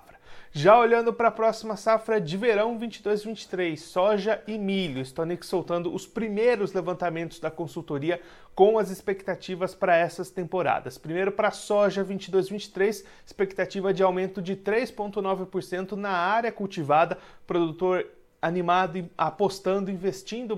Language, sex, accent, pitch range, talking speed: Portuguese, male, Brazilian, 170-200 Hz, 120 wpm